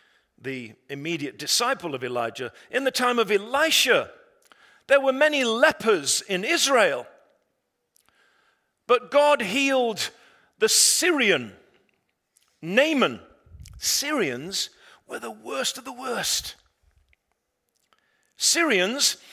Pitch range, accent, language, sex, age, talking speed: 185-280 Hz, British, English, male, 50-69, 95 wpm